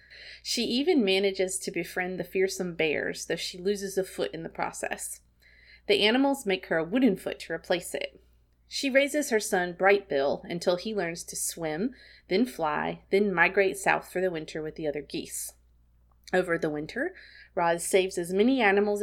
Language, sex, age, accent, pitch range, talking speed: English, female, 30-49, American, 165-200 Hz, 175 wpm